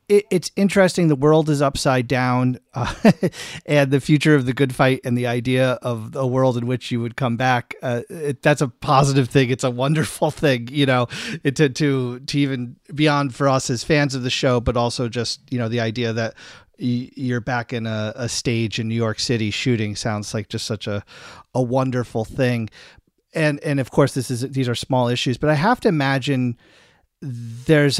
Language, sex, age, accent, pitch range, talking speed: English, male, 40-59, American, 120-145 Hz, 200 wpm